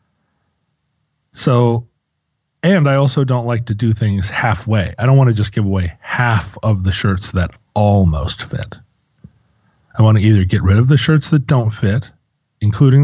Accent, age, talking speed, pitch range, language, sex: American, 30-49, 170 wpm, 105-140 Hz, English, male